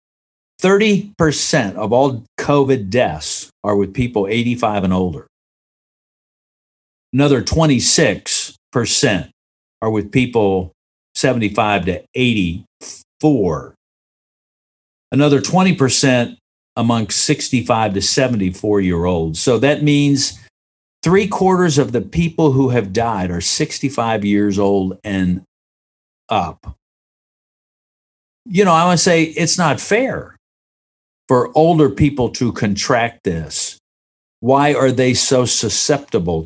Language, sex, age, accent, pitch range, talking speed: English, male, 50-69, American, 100-145 Hz, 100 wpm